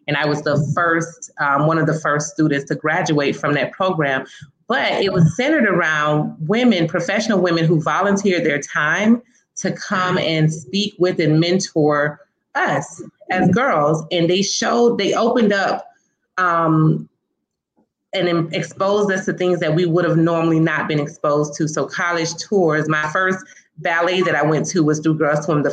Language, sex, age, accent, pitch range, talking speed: English, female, 30-49, American, 155-200 Hz, 175 wpm